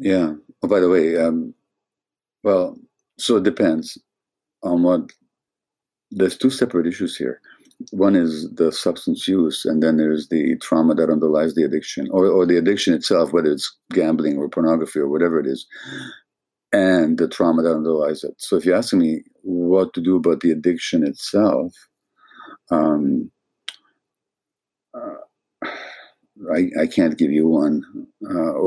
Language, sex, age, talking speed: English, male, 50-69, 150 wpm